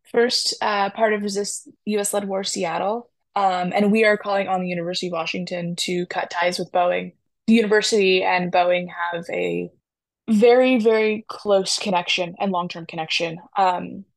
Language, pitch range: English, 170-205 Hz